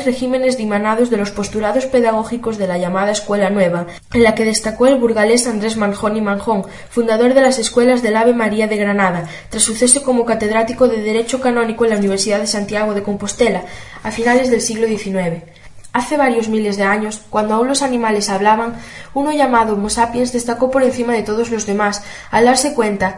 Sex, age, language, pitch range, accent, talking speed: female, 10-29, Spanish, 205-245 Hz, Spanish, 190 wpm